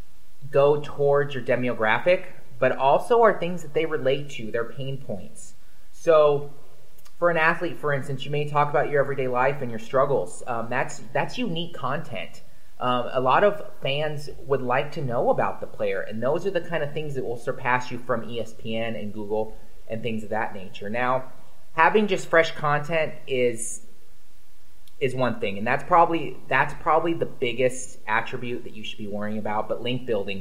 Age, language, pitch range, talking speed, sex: 20-39, English, 120-160 Hz, 185 wpm, male